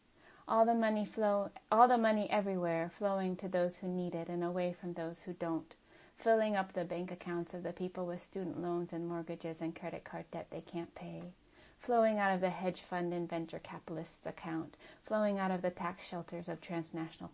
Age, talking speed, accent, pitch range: 30-49, 200 wpm, American, 165-185 Hz